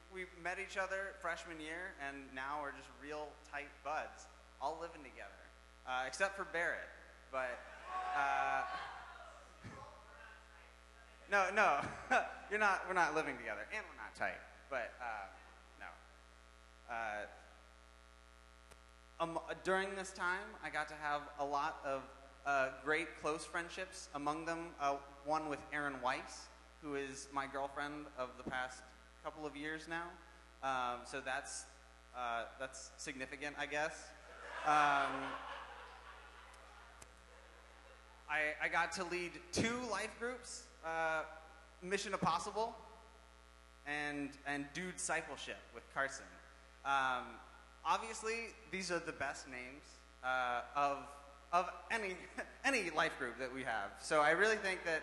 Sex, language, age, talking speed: male, English, 20-39, 130 wpm